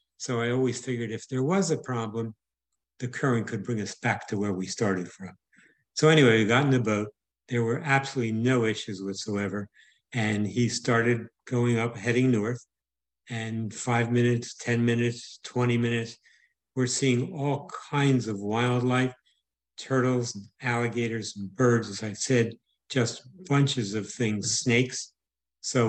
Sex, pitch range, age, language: male, 105-125 Hz, 60-79, English